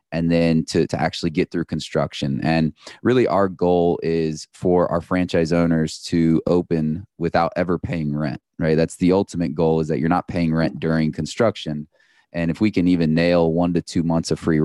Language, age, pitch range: English, 20-39, 80-90 Hz